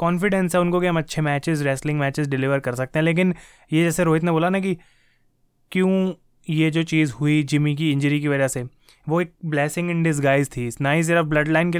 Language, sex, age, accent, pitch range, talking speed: Hindi, male, 20-39, native, 150-180 Hz, 220 wpm